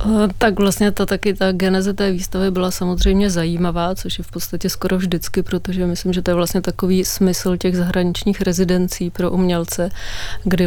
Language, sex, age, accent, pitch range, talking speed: Czech, female, 20-39, native, 175-185 Hz, 165 wpm